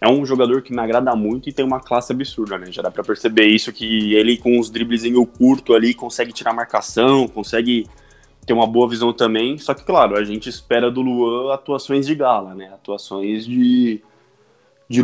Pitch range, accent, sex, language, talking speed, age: 110-130 Hz, Brazilian, male, Portuguese, 200 wpm, 20-39